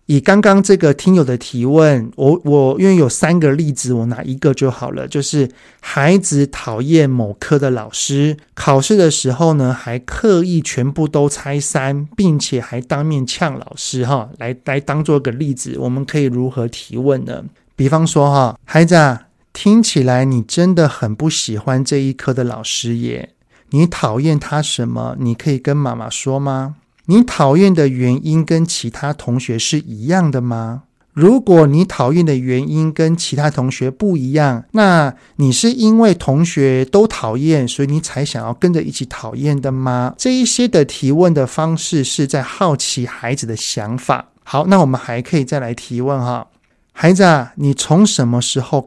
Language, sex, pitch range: Chinese, male, 125-160 Hz